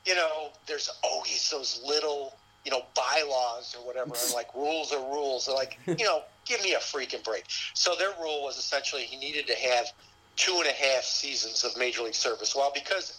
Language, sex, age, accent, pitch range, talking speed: English, male, 50-69, American, 120-150 Hz, 205 wpm